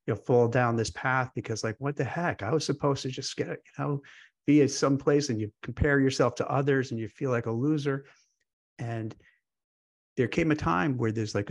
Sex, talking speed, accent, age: male, 220 wpm, American, 50-69